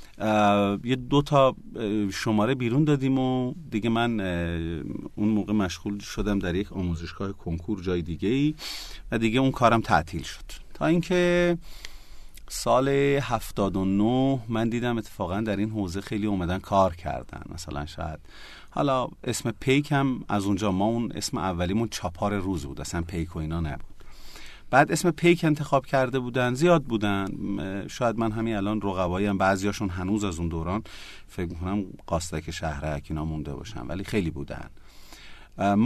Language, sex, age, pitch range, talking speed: Persian, male, 40-59, 90-115 Hz, 150 wpm